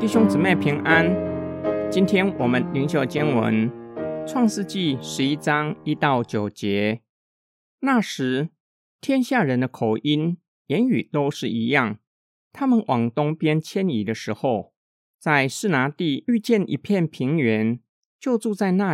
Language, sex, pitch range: Chinese, male, 125-200 Hz